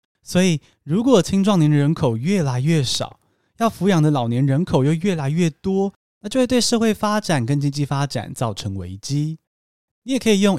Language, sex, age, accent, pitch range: Chinese, male, 20-39, native, 140-200 Hz